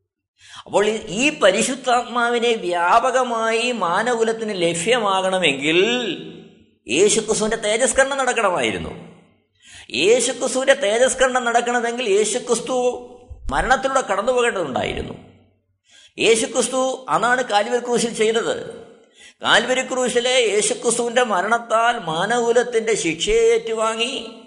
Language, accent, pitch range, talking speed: Malayalam, native, 150-245 Hz, 70 wpm